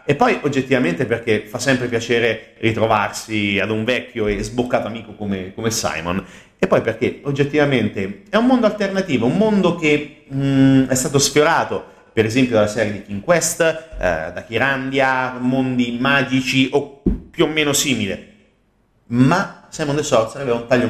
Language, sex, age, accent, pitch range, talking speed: Italian, male, 30-49, native, 110-145 Hz, 160 wpm